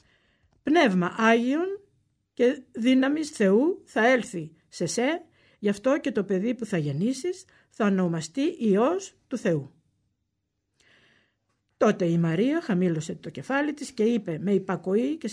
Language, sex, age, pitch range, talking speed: Greek, female, 60-79, 180-250 Hz, 135 wpm